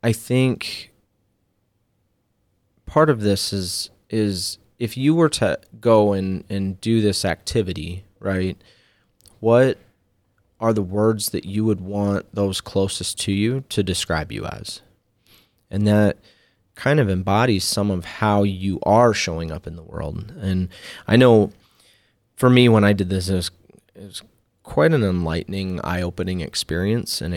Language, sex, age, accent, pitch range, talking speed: English, male, 30-49, American, 90-105 Hz, 150 wpm